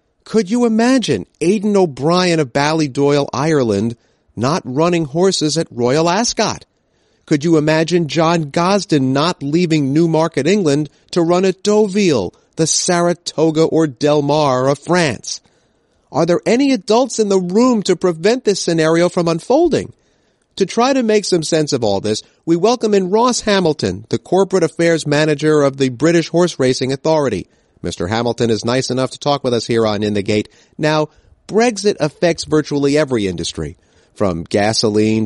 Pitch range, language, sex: 115-180 Hz, English, male